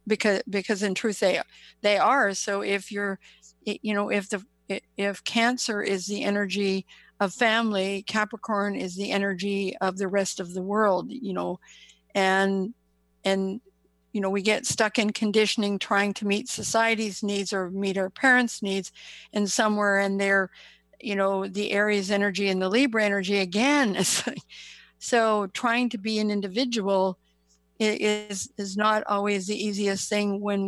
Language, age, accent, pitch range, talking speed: English, 50-69, American, 195-215 Hz, 160 wpm